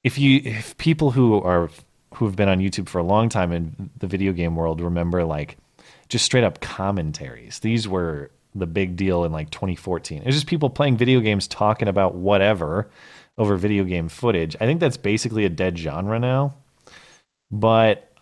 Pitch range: 85-105 Hz